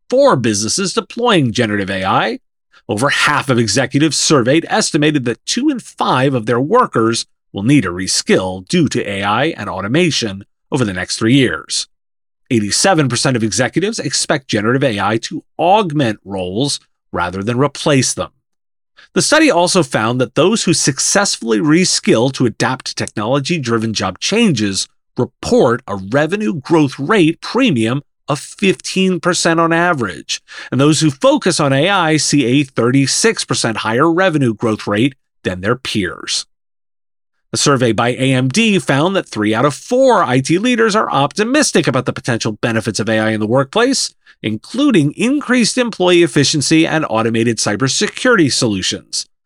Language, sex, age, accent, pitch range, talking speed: English, male, 30-49, American, 115-175 Hz, 140 wpm